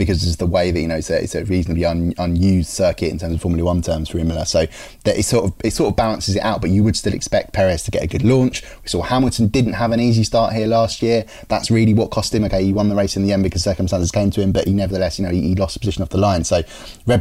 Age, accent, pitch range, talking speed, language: 20-39, British, 90-110 Hz, 310 wpm, English